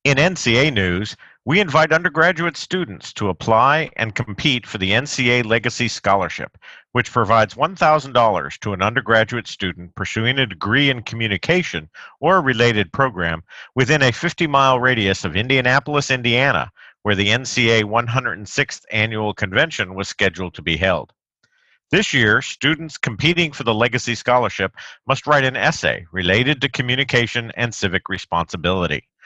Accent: American